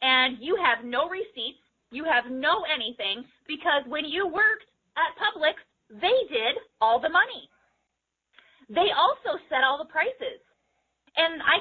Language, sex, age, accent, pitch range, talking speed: English, female, 30-49, American, 245-335 Hz, 145 wpm